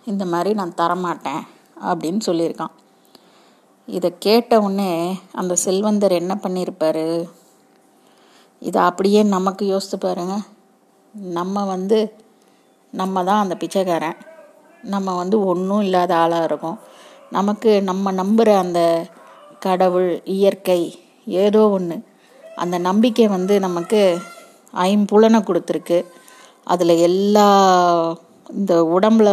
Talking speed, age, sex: 100 wpm, 30-49, female